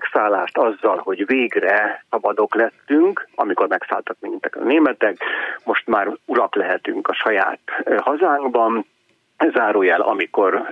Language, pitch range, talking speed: Hungarian, 345-420 Hz, 110 wpm